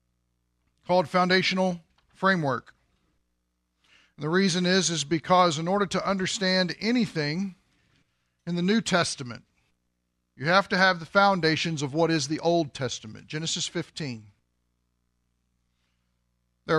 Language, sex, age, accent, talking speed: English, male, 50-69, American, 115 wpm